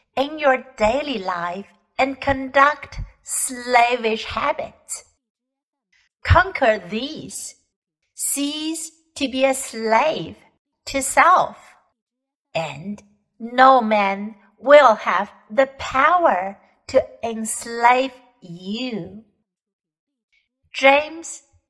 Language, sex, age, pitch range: Chinese, female, 60-79, 215-290 Hz